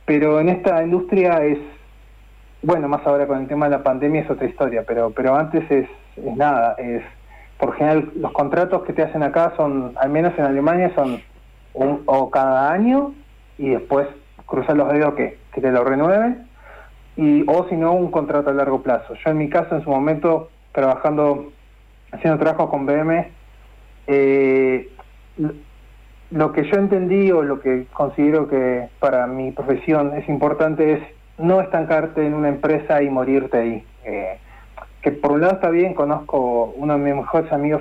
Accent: Argentinian